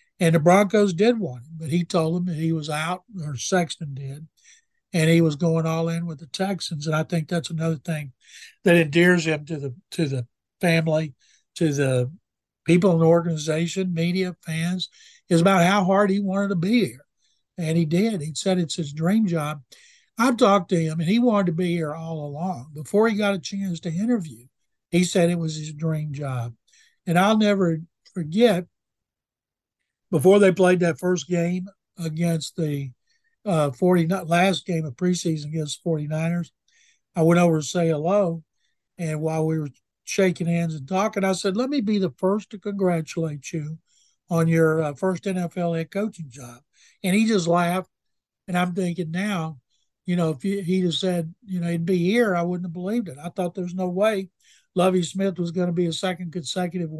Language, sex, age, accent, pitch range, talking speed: English, male, 60-79, American, 160-190 Hz, 195 wpm